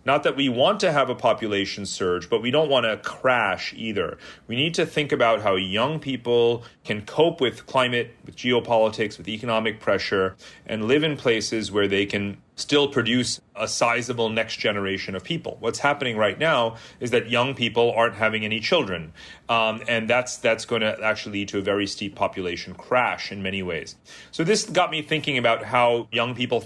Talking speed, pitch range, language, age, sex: 195 wpm, 100-125 Hz, English, 30-49, male